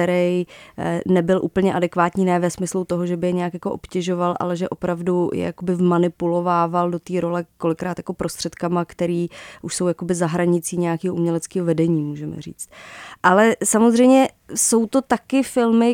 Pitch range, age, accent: 185-215 Hz, 20-39, native